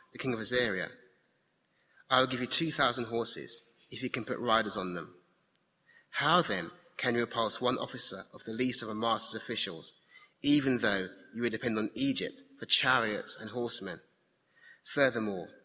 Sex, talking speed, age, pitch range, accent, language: male, 165 wpm, 30-49, 110-140 Hz, British, English